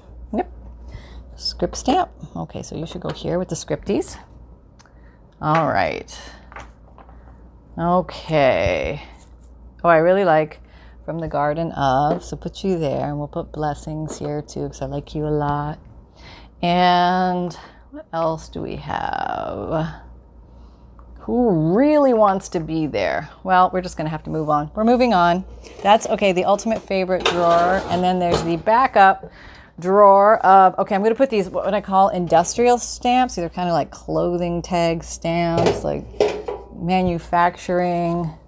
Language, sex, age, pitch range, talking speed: English, female, 30-49, 150-190 Hz, 150 wpm